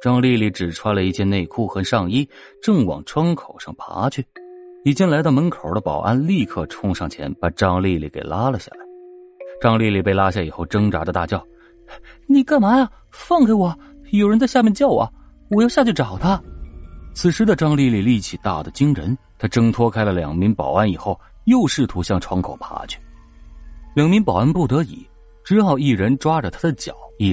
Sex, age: male, 30-49